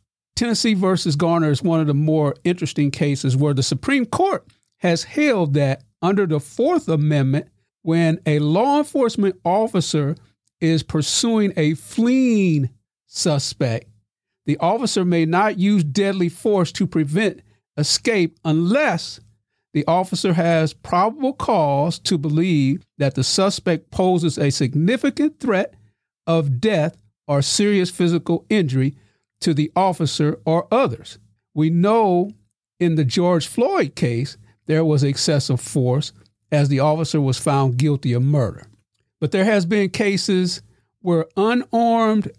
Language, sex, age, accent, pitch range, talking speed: English, male, 50-69, American, 145-195 Hz, 130 wpm